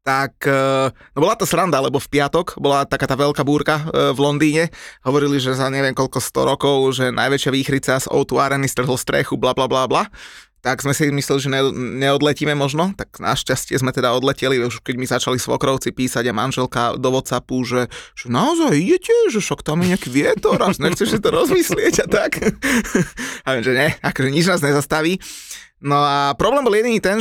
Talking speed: 185 wpm